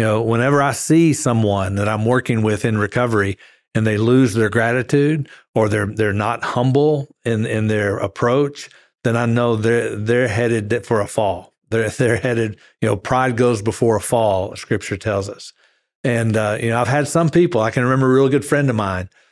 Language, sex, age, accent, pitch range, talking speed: English, male, 50-69, American, 110-125 Hz, 200 wpm